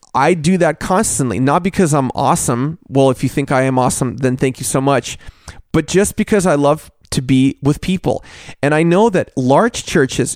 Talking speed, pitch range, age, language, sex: 205 wpm, 135-170 Hz, 30-49, English, male